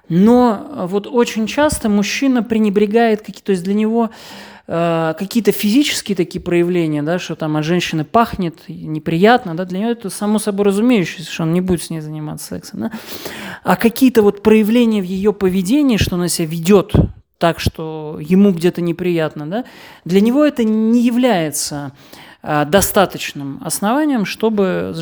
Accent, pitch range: native, 165-220 Hz